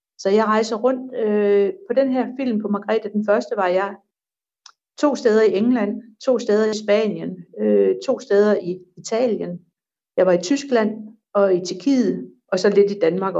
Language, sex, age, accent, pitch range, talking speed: Danish, female, 60-79, native, 185-230 Hz, 170 wpm